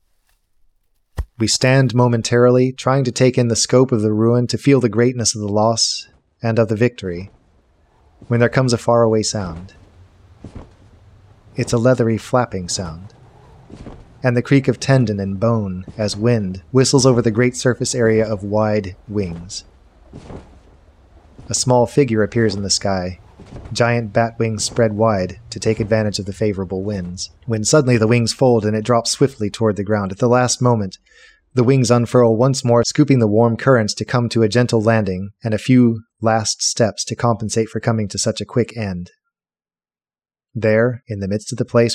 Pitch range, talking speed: 100-120 Hz, 175 wpm